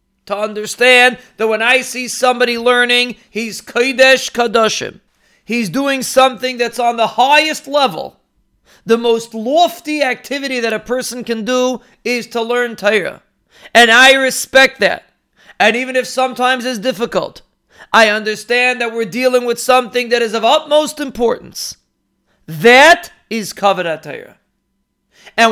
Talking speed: 140 wpm